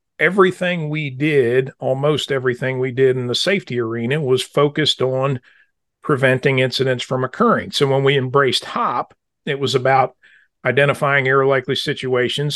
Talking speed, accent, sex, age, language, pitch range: 145 wpm, American, male, 40-59, English, 130-160 Hz